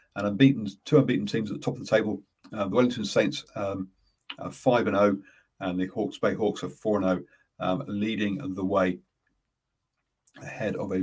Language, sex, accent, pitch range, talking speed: English, male, British, 95-120 Hz, 205 wpm